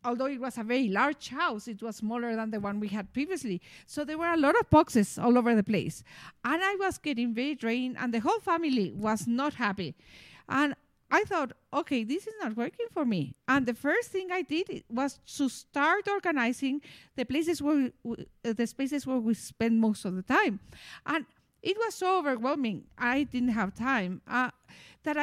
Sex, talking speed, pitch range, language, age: female, 195 wpm, 225-300 Hz, English, 50-69